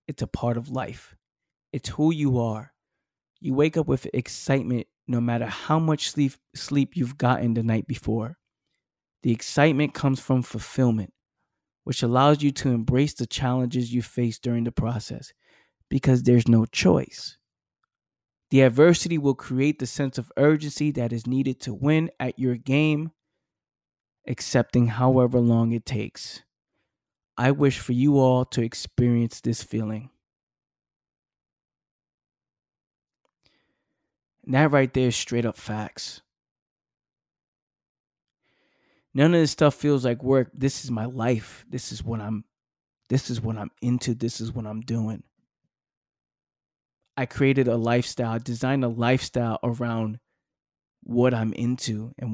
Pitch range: 115-135 Hz